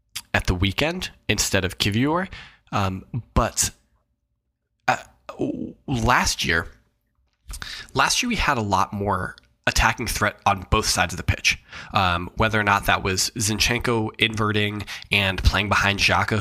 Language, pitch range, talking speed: English, 95-110 Hz, 140 wpm